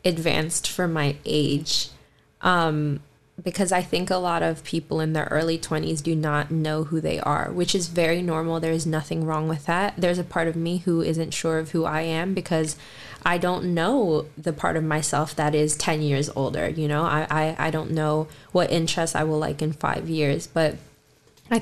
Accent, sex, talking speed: American, female, 205 wpm